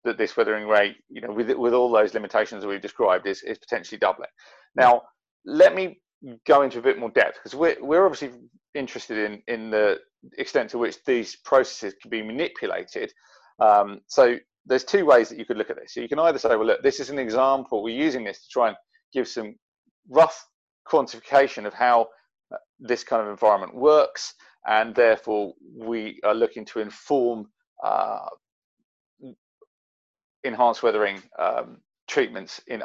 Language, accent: English, British